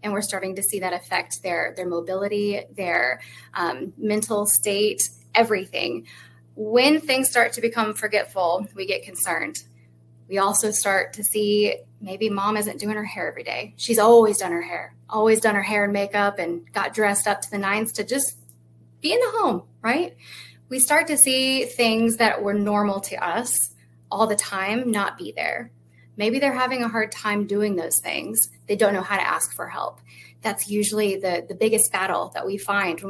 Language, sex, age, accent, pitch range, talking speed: English, female, 20-39, American, 180-220 Hz, 190 wpm